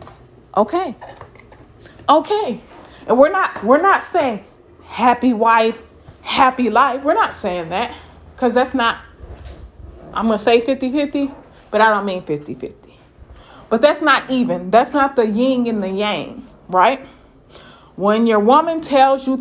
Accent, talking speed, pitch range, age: American, 140 wpm, 215-295 Hz, 20-39